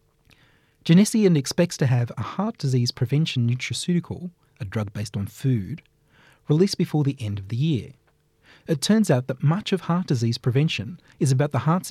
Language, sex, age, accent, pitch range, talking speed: English, male, 30-49, Australian, 120-160 Hz, 170 wpm